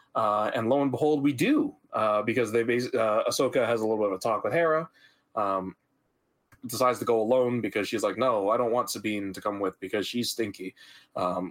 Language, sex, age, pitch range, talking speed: English, male, 20-39, 100-125 Hz, 220 wpm